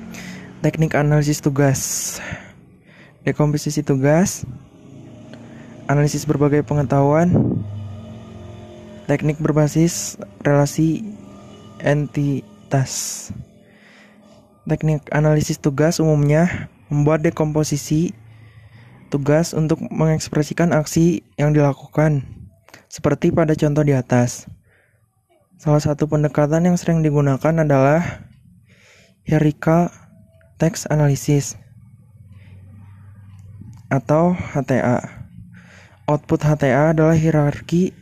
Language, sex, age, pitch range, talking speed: Indonesian, male, 20-39, 130-160 Hz, 70 wpm